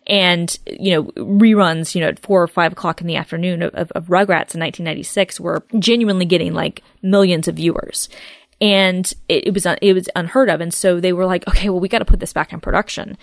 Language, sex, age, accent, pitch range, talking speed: English, female, 20-39, American, 170-195 Hz, 225 wpm